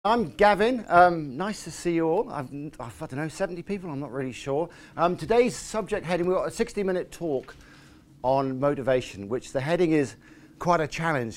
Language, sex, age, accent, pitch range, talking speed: English, male, 50-69, British, 130-170 Hz, 185 wpm